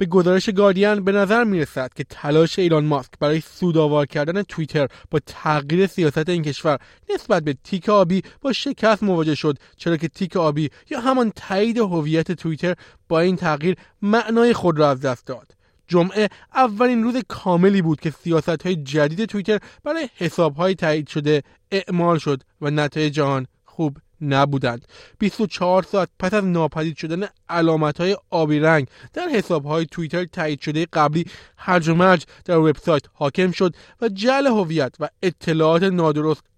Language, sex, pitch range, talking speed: Persian, male, 155-205 Hz, 155 wpm